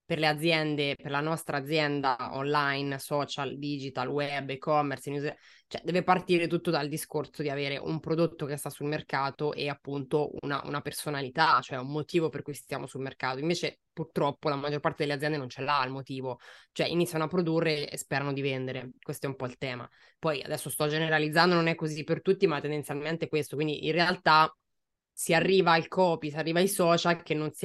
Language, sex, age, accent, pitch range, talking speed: Italian, female, 20-39, native, 145-165 Hz, 200 wpm